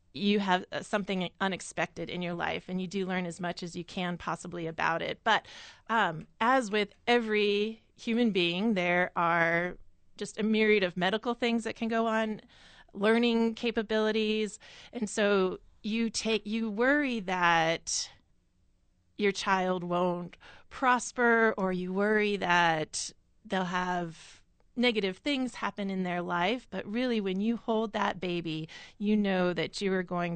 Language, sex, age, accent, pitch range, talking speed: English, female, 30-49, American, 180-215 Hz, 150 wpm